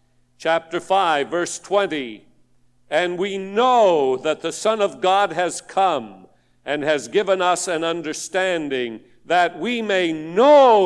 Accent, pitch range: American, 125-200 Hz